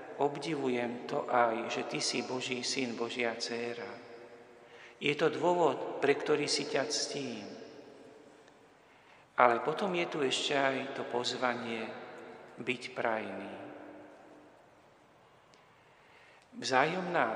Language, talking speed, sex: Slovak, 100 wpm, male